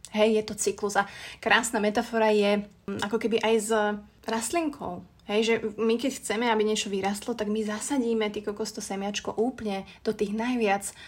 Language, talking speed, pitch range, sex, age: Slovak, 170 wpm, 205-230 Hz, female, 30-49